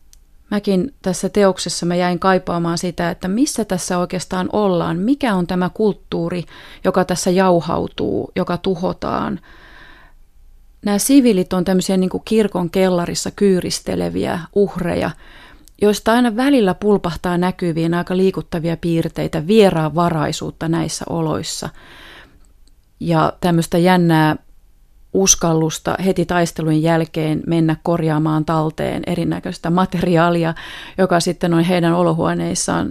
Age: 30-49